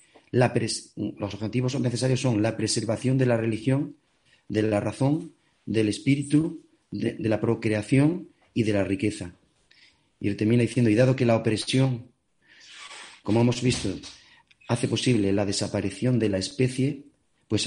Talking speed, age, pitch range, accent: 150 wpm, 40-59, 105-135 Hz, Spanish